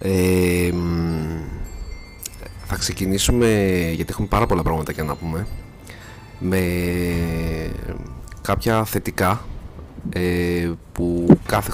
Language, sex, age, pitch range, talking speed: Greek, male, 30-49, 85-100 Hz, 85 wpm